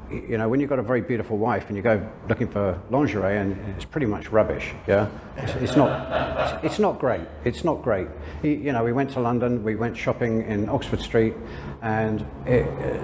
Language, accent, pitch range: English, British, 105-125 Hz